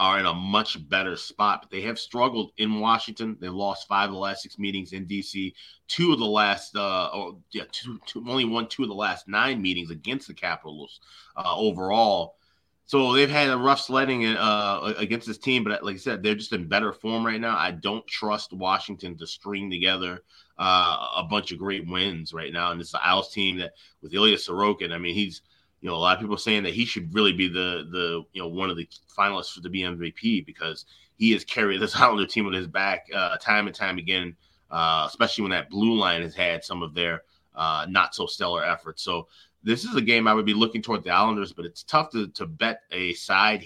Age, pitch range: 30-49, 90-110 Hz